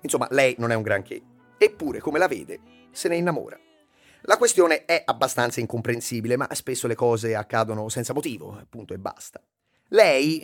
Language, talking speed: Italian, 165 wpm